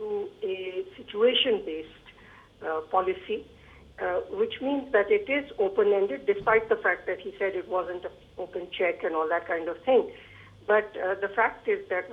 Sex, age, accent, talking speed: female, 60-79, Indian, 170 wpm